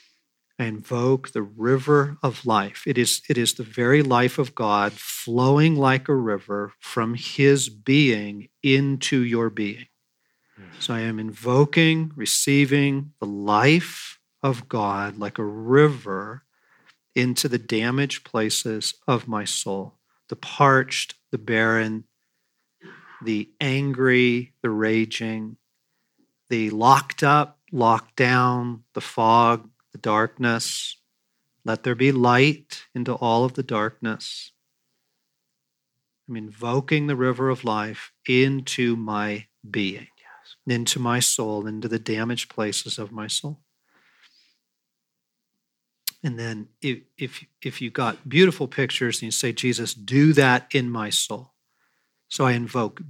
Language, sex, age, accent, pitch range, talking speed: English, male, 40-59, American, 110-135 Hz, 125 wpm